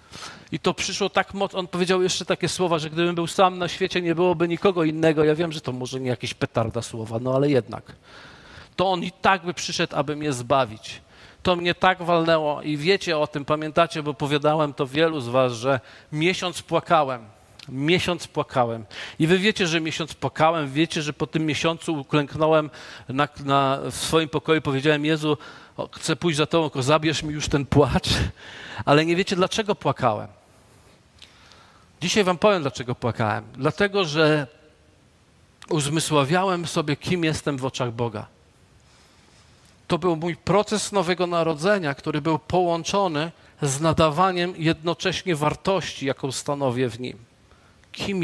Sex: male